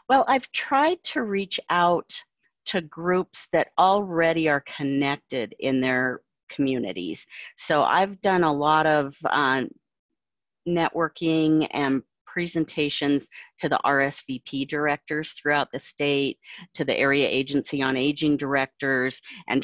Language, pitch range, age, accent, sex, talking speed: English, 140-170 Hz, 40-59, American, female, 120 wpm